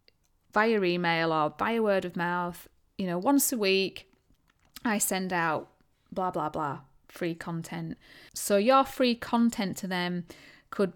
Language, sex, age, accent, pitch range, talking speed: English, female, 30-49, British, 175-215 Hz, 150 wpm